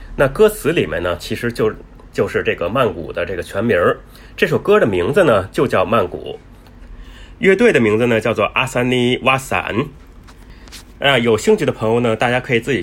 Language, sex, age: Chinese, male, 30-49